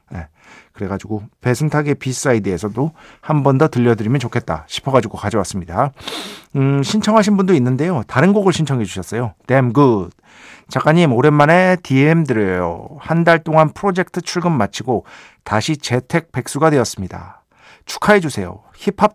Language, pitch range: Korean, 110-170 Hz